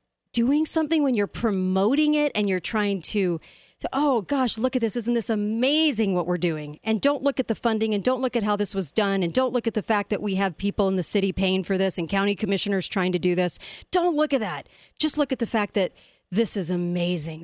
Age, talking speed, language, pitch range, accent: 40-59, 250 wpm, English, 180-230 Hz, American